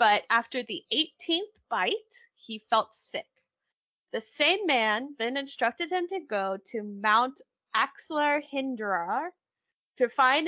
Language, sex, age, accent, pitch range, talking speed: English, female, 10-29, American, 225-345 Hz, 125 wpm